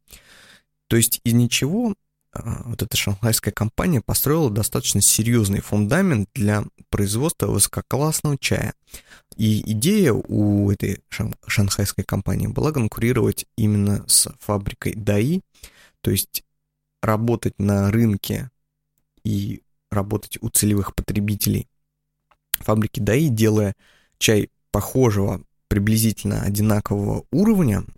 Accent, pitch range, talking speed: native, 100-125 Hz, 100 wpm